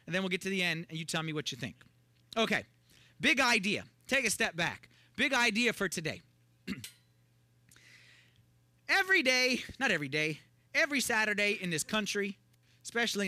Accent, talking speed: American, 165 wpm